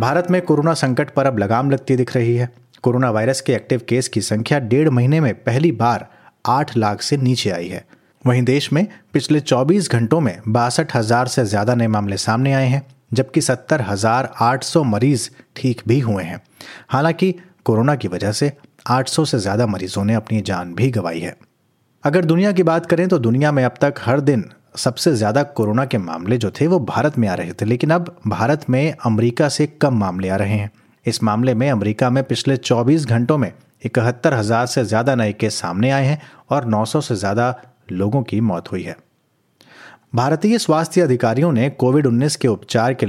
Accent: native